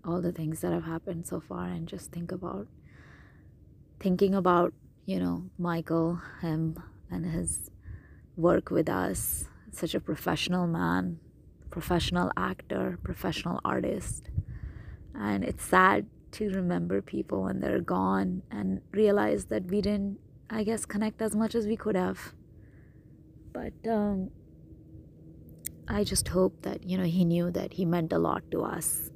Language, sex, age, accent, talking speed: English, female, 20-39, Indian, 145 wpm